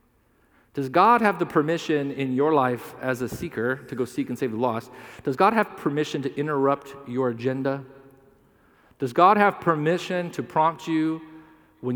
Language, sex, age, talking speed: English, male, 40-59, 170 wpm